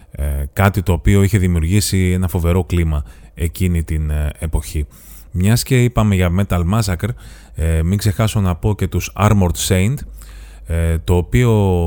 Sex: male